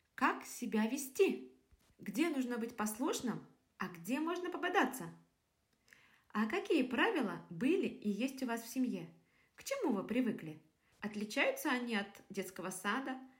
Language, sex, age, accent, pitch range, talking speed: Russian, female, 20-39, native, 200-265 Hz, 135 wpm